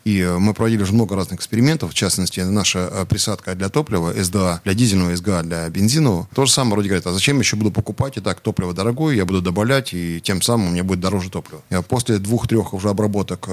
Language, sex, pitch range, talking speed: Russian, male, 95-110 Hz, 215 wpm